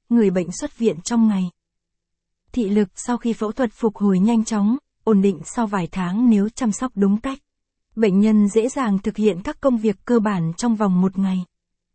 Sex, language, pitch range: female, Vietnamese, 200-235 Hz